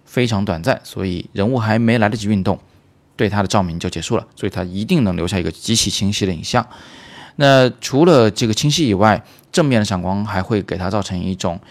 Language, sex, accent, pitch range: Chinese, male, native, 95-115 Hz